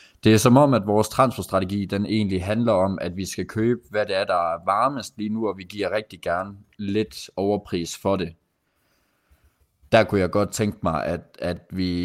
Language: Danish